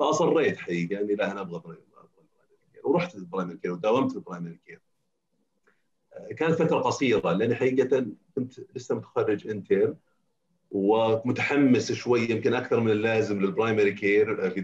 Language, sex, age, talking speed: Arabic, male, 40-59, 135 wpm